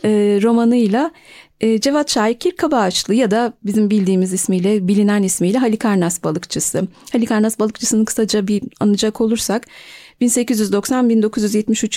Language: Turkish